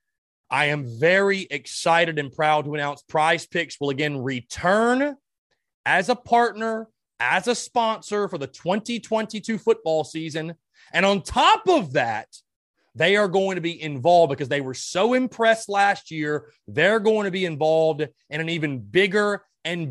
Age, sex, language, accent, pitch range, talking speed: 30-49, male, English, American, 135-175 Hz, 155 wpm